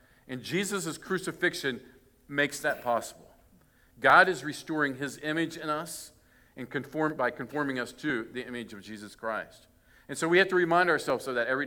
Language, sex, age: English, male, 50-69